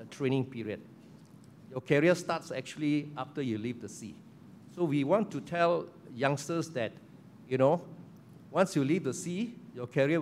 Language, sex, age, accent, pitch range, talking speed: English, male, 50-69, Malaysian, 120-160 Hz, 160 wpm